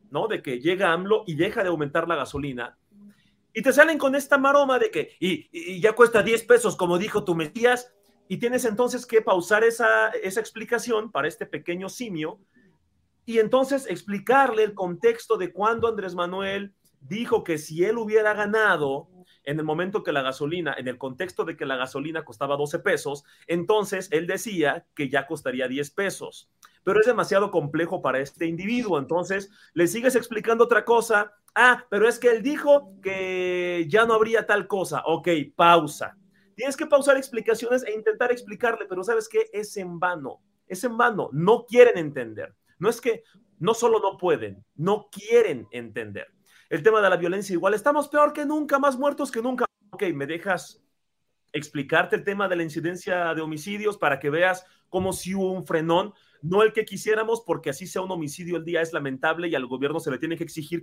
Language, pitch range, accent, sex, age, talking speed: Spanish, 165-230 Hz, Mexican, male, 40-59, 185 wpm